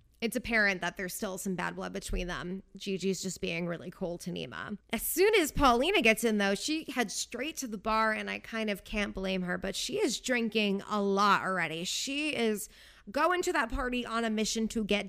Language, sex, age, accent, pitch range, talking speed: English, female, 20-39, American, 200-275 Hz, 220 wpm